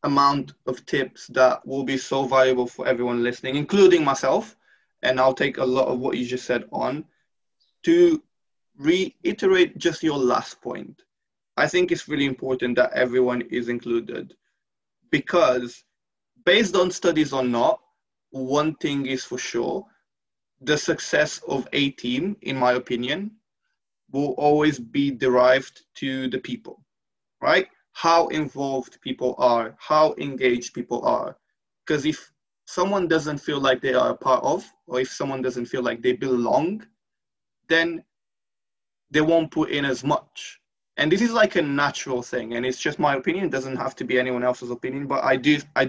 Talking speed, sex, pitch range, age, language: 160 wpm, male, 125-150 Hz, 20-39, English